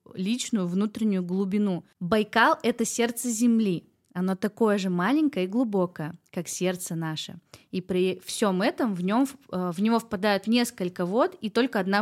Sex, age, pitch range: female, 20-39, 190-235 Hz